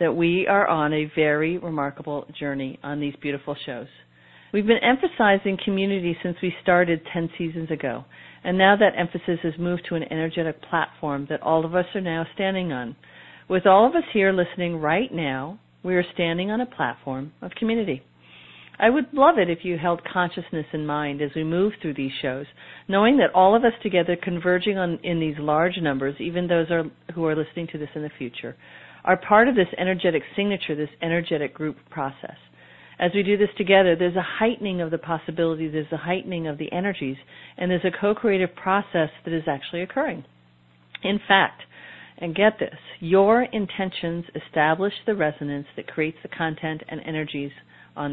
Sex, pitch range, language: female, 150-185 Hz, English